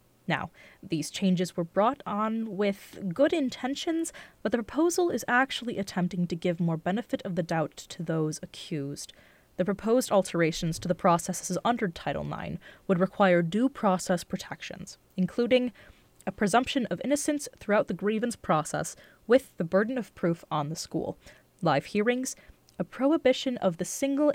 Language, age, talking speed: English, 20-39, 155 wpm